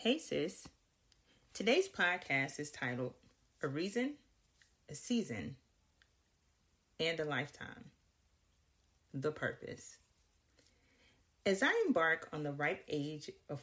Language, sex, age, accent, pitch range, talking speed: English, female, 40-59, American, 135-190 Hz, 100 wpm